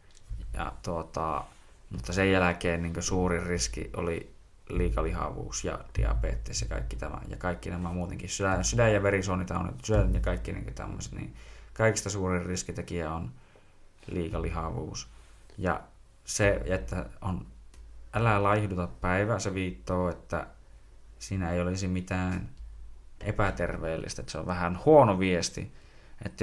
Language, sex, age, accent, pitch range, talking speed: Finnish, male, 20-39, native, 90-105 Hz, 130 wpm